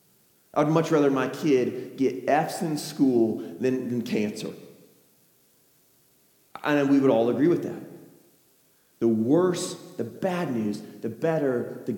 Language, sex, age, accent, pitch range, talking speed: English, male, 40-59, American, 185-270 Hz, 135 wpm